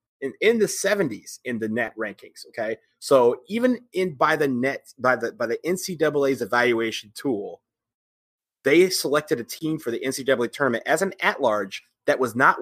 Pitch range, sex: 110-150 Hz, male